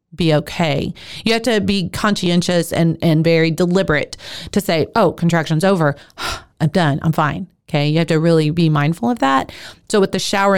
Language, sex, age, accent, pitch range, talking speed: English, female, 30-49, American, 160-200 Hz, 185 wpm